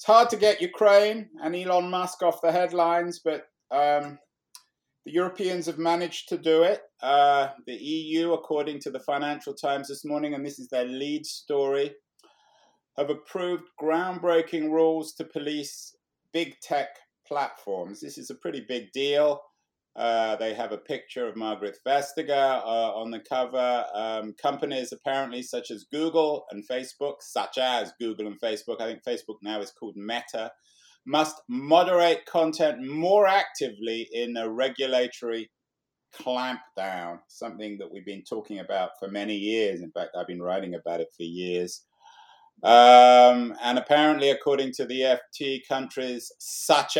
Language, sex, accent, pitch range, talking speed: English, male, British, 115-160 Hz, 150 wpm